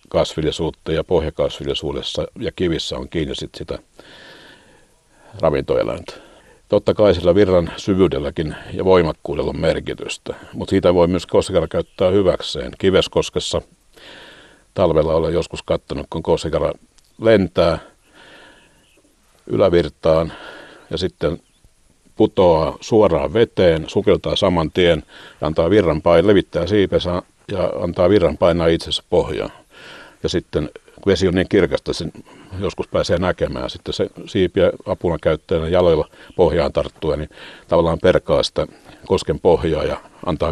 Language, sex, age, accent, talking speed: Finnish, male, 60-79, native, 115 wpm